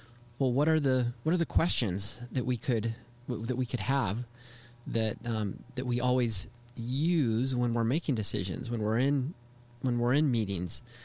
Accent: American